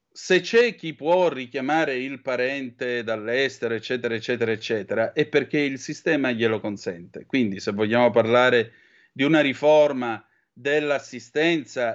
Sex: male